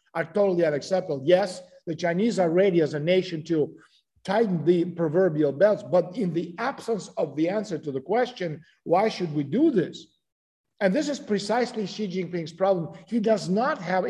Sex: male